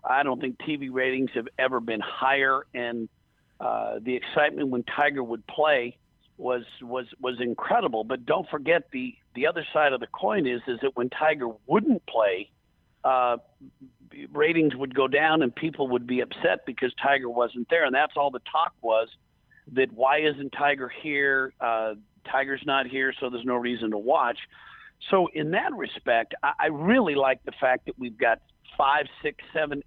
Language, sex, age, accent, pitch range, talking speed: English, male, 50-69, American, 125-145 Hz, 180 wpm